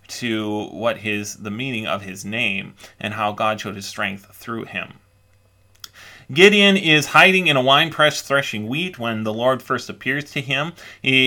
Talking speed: 170 wpm